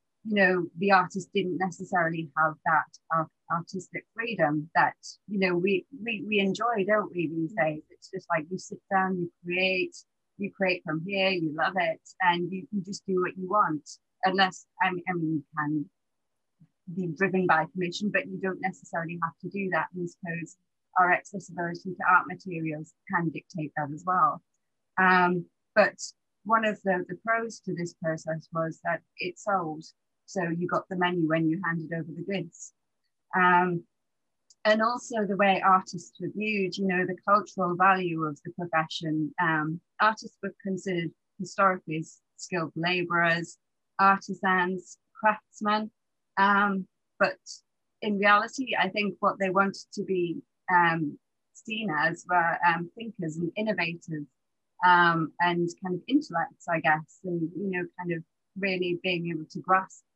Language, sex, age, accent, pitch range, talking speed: English, female, 30-49, British, 165-195 Hz, 160 wpm